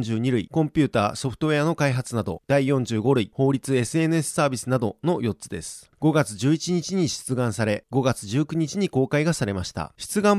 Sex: male